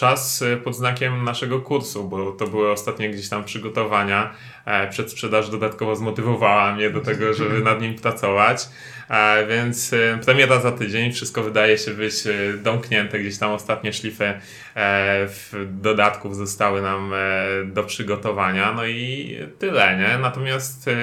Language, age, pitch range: Polish, 20-39, 105-120 Hz